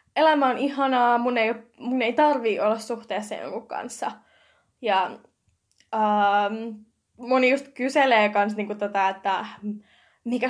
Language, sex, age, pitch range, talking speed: Finnish, female, 10-29, 210-245 Hz, 120 wpm